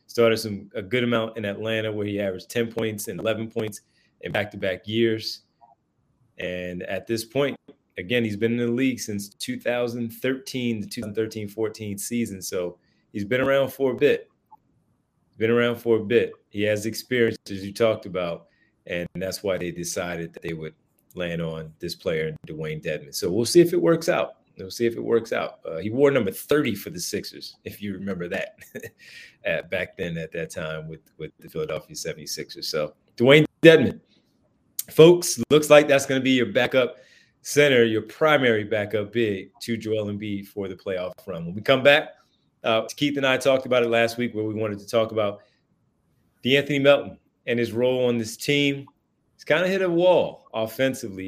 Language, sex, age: English, male, 30-49